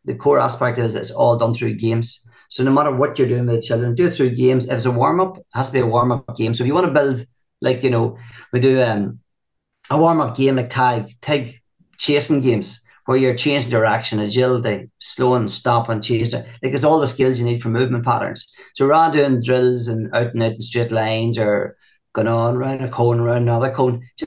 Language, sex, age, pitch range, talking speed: English, male, 40-59, 120-135 Hz, 225 wpm